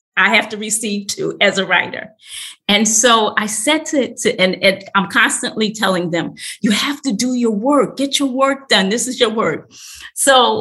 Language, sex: English, female